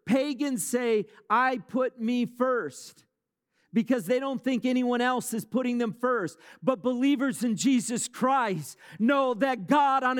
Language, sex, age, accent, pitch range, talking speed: English, male, 50-69, American, 230-330 Hz, 145 wpm